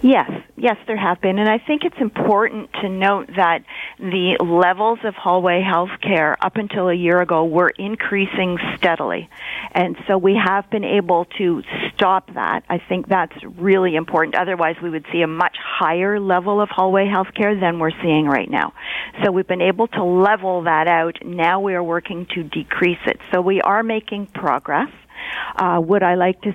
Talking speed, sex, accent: 190 wpm, female, American